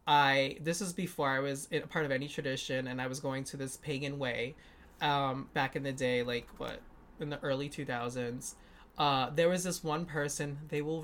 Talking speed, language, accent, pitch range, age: 210 wpm, English, American, 140-175 Hz, 20-39